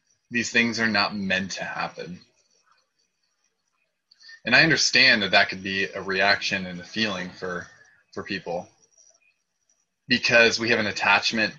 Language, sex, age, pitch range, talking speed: English, male, 20-39, 95-120 Hz, 140 wpm